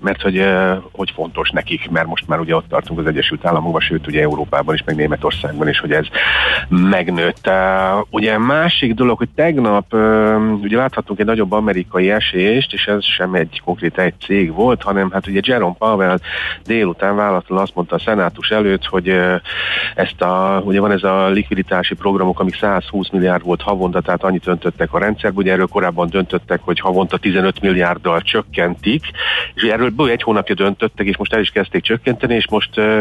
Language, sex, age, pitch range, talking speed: Hungarian, male, 40-59, 90-110 Hz, 175 wpm